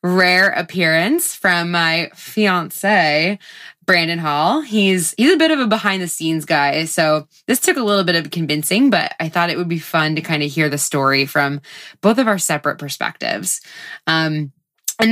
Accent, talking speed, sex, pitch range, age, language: American, 180 wpm, female, 155-210 Hz, 20-39, English